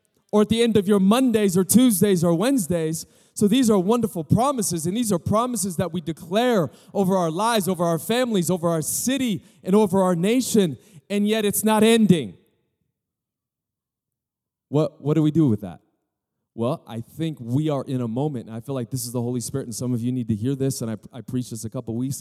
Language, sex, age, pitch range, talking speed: English, male, 20-39, 115-180 Hz, 220 wpm